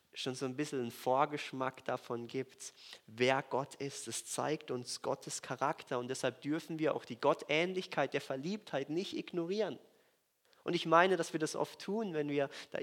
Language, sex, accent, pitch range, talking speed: German, male, German, 130-170 Hz, 180 wpm